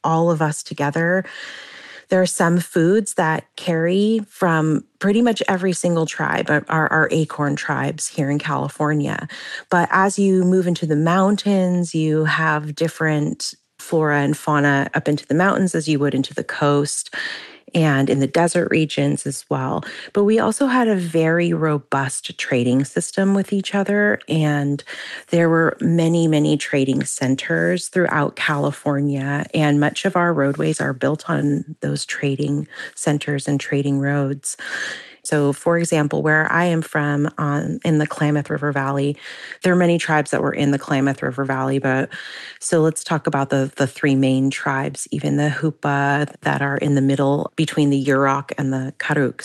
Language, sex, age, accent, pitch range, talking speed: English, female, 30-49, American, 140-170 Hz, 165 wpm